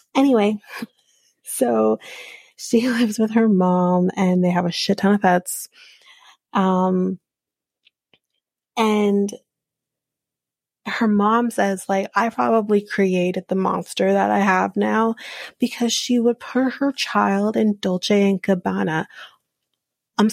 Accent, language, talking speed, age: American, English, 120 wpm, 30-49